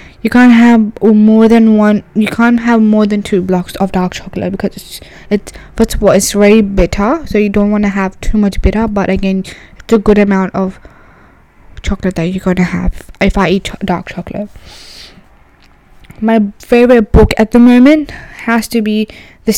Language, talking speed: English, 185 wpm